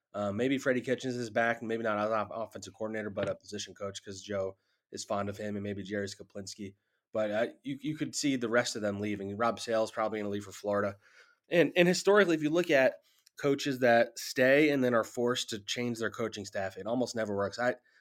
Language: English